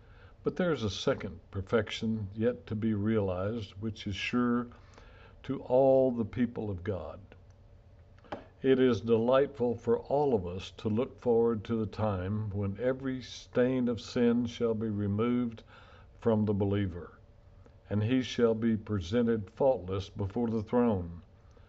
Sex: male